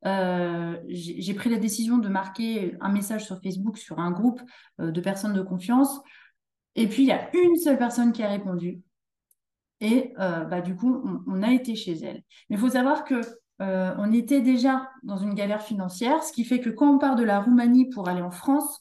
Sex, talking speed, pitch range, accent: female, 215 wpm, 185-245 Hz, French